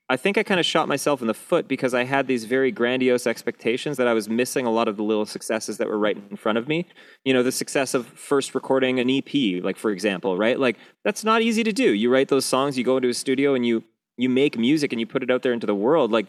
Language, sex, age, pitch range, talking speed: English, male, 30-49, 110-140 Hz, 285 wpm